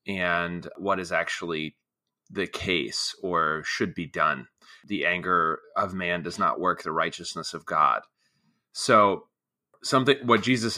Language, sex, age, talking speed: English, male, 30-49, 140 wpm